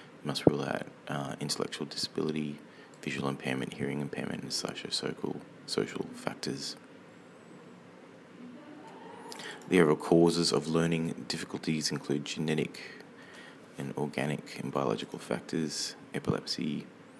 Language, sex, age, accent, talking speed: English, male, 30-49, Australian, 100 wpm